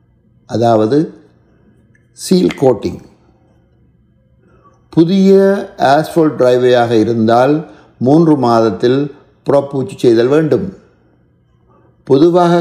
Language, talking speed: Tamil, 60 wpm